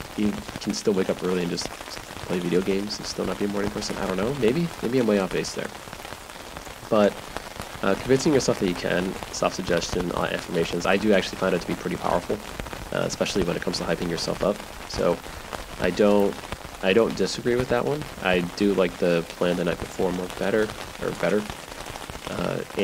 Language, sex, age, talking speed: English, male, 30-49, 200 wpm